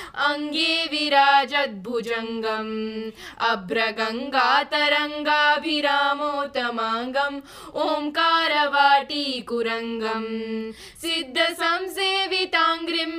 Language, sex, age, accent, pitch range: Hindi, female, 20-39, native, 230-295 Hz